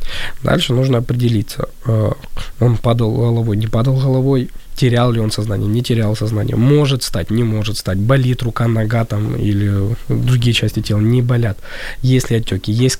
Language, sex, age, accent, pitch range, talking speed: Ukrainian, male, 20-39, native, 110-130 Hz, 160 wpm